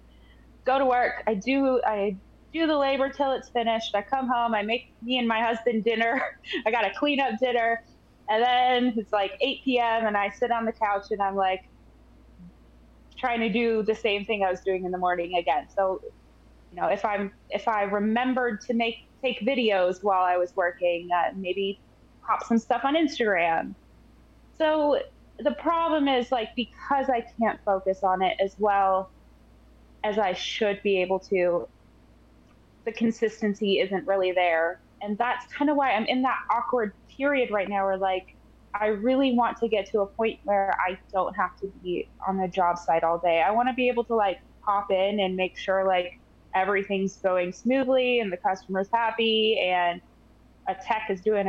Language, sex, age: English, female, 20-39